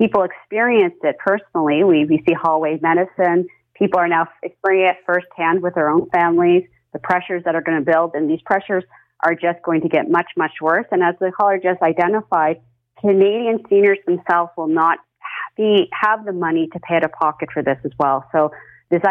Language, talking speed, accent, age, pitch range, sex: English, 200 wpm, American, 30-49, 160-185 Hz, female